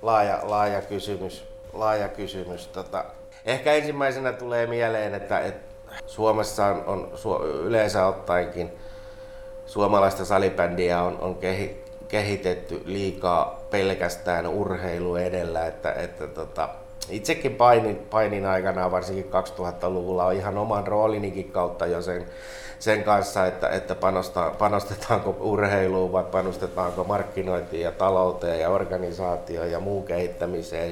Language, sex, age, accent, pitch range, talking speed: Finnish, male, 60-79, native, 90-105 Hz, 115 wpm